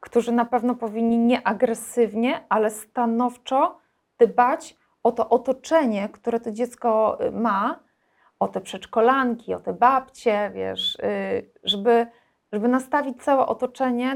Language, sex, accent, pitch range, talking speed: Polish, female, native, 205-245 Hz, 115 wpm